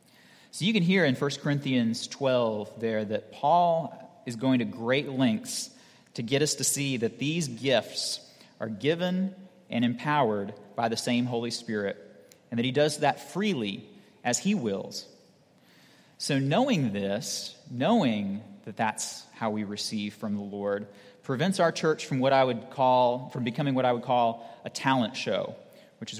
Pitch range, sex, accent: 115-155 Hz, male, American